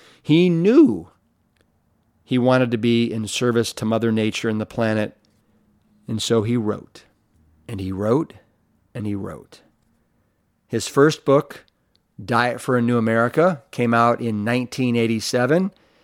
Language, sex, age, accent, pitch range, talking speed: English, male, 40-59, American, 115-140 Hz, 135 wpm